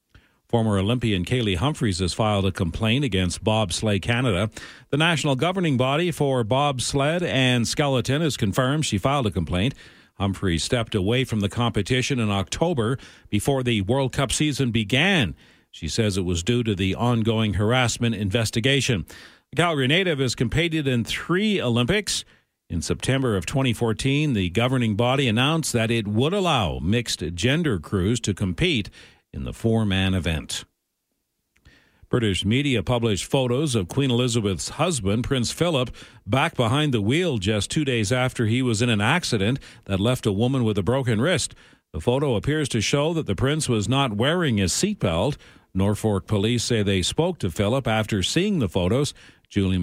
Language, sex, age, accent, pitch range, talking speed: English, male, 50-69, American, 105-135 Hz, 165 wpm